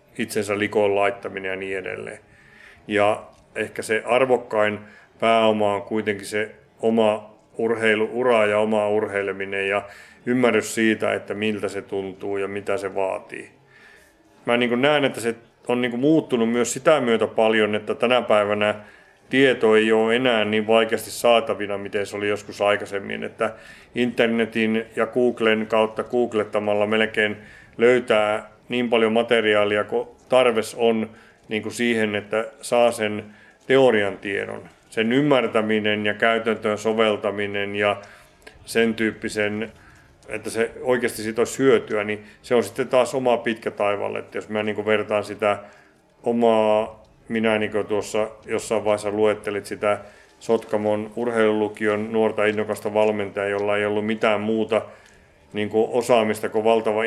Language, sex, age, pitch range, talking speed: Finnish, male, 30-49, 105-115 Hz, 135 wpm